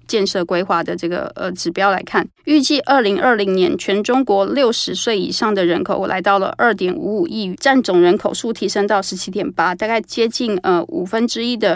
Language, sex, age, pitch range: Chinese, female, 20-39, 190-230 Hz